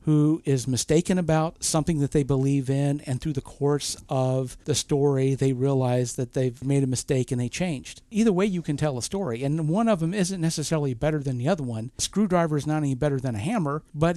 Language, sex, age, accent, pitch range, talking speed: English, male, 50-69, American, 130-160 Hz, 230 wpm